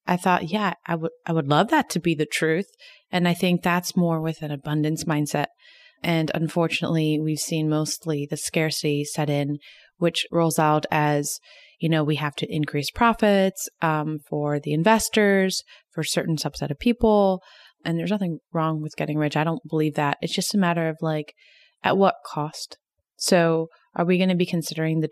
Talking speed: 190 wpm